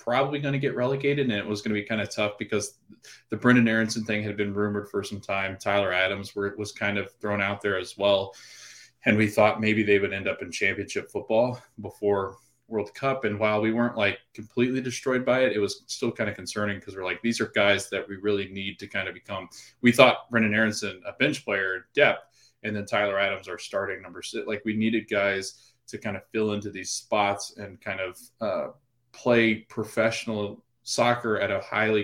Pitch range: 100-115 Hz